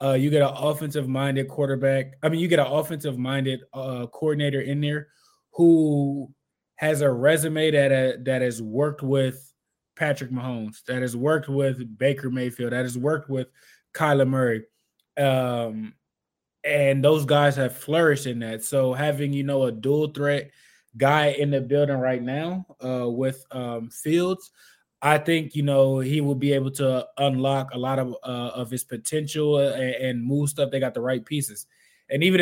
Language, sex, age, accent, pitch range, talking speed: English, male, 20-39, American, 130-150 Hz, 170 wpm